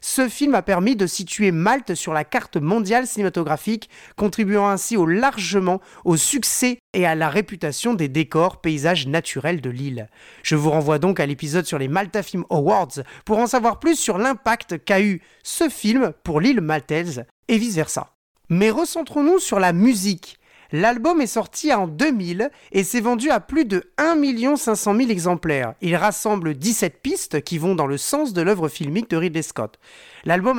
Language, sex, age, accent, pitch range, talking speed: French, male, 30-49, French, 165-240 Hz, 175 wpm